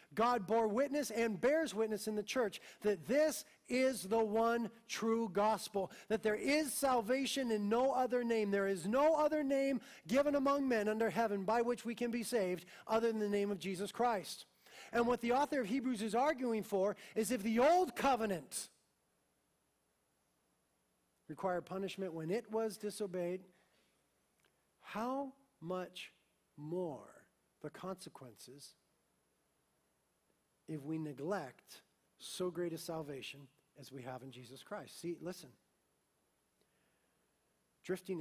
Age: 40-59